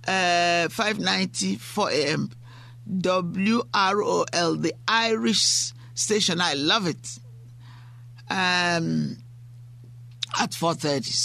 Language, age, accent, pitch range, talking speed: English, 50-69, Nigerian, 120-190 Hz, 75 wpm